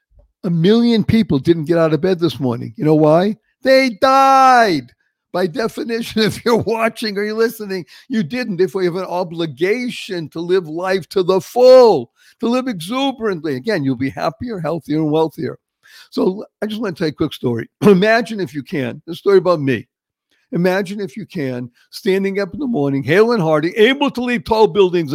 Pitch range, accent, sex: 145-195 Hz, American, male